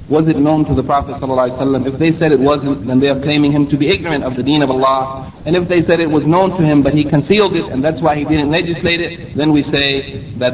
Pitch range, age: 125-150 Hz, 30-49